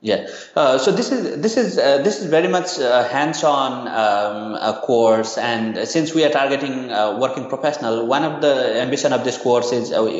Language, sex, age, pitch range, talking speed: English, male, 30-49, 120-140 Hz, 200 wpm